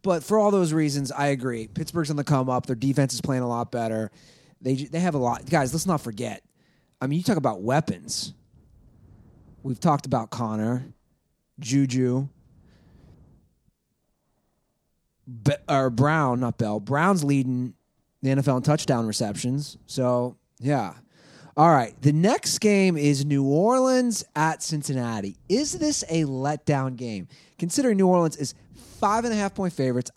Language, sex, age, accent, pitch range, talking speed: English, male, 30-49, American, 125-170 Hz, 145 wpm